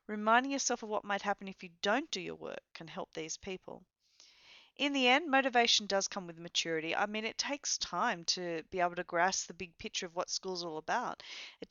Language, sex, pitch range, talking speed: English, female, 185-240 Hz, 220 wpm